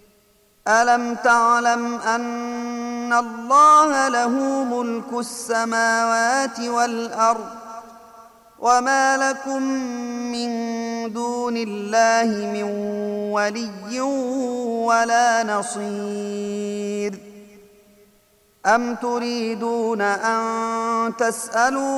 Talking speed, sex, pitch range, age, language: 55 wpm, male, 225-240 Hz, 30-49, Arabic